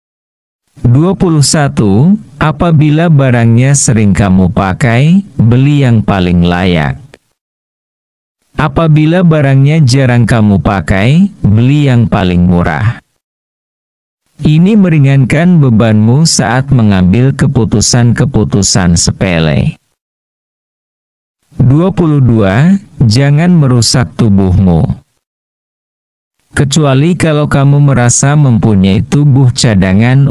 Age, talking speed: 50-69, 75 wpm